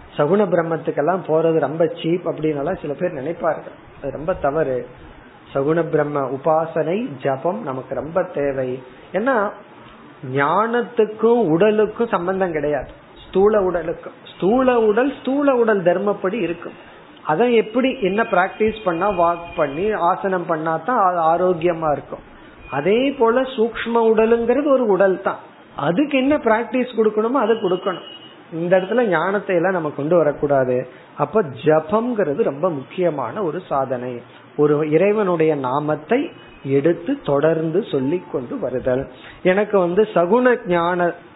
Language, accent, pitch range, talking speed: Tamil, native, 150-210 Hz, 105 wpm